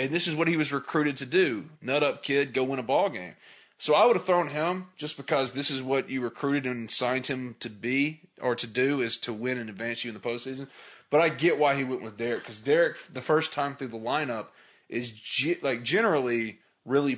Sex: male